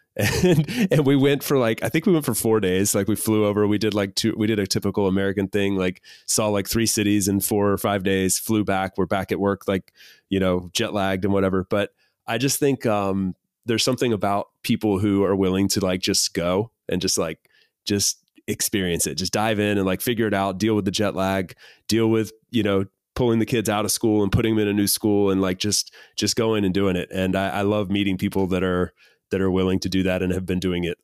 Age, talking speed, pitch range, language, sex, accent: 30-49, 250 wpm, 95-110 Hz, English, male, American